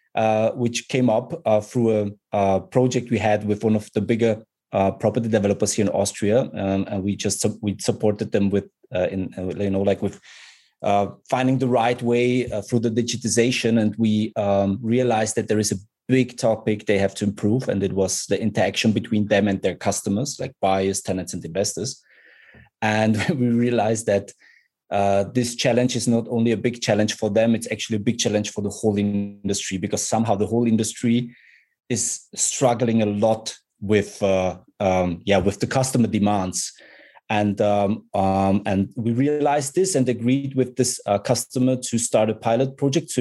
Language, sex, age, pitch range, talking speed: English, male, 20-39, 105-125 Hz, 185 wpm